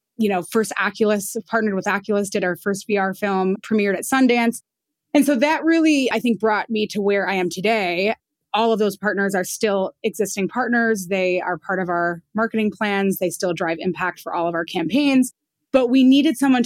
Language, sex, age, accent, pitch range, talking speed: English, female, 20-39, American, 180-220 Hz, 200 wpm